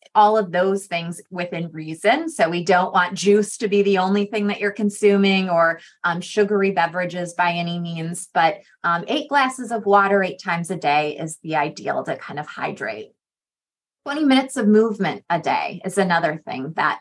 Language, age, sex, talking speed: English, 20-39, female, 185 wpm